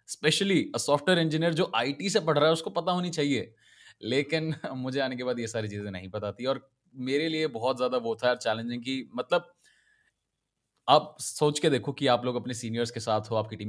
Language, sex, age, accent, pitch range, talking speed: English, male, 20-39, Indian, 110-145 Hz, 180 wpm